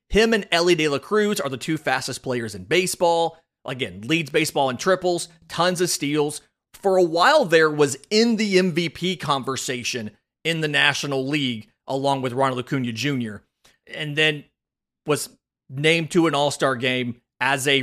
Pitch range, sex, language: 130-170 Hz, male, English